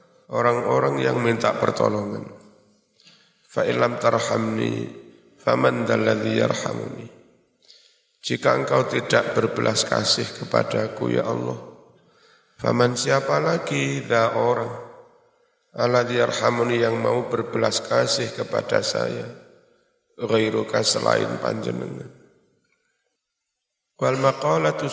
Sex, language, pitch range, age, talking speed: male, Indonesian, 115-145 Hz, 50-69, 75 wpm